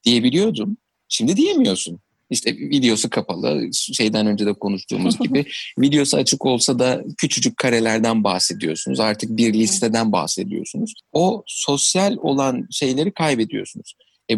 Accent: native